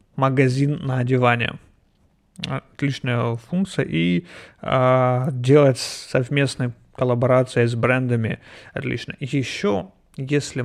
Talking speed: 100 wpm